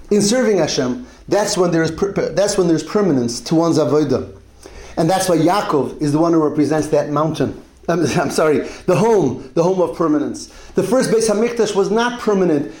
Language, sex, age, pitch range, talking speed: English, male, 30-49, 160-210 Hz, 180 wpm